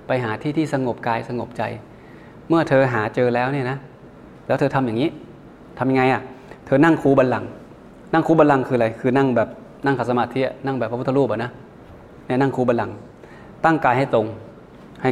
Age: 20-39